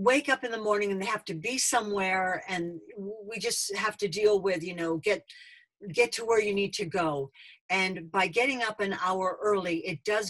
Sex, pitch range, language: female, 170-210 Hz, English